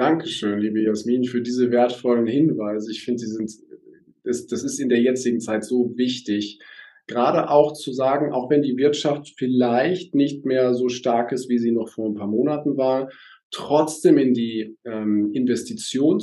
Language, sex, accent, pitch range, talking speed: German, male, German, 115-150 Hz, 175 wpm